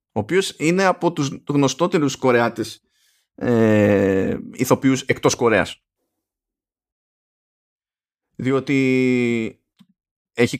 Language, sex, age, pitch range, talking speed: Greek, male, 30-49, 110-180 Hz, 70 wpm